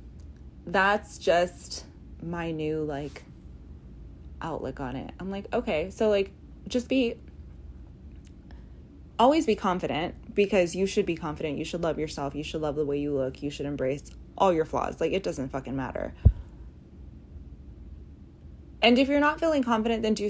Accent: American